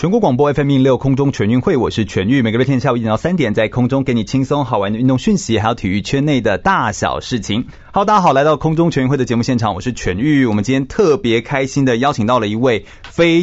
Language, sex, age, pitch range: Chinese, male, 30-49, 110-145 Hz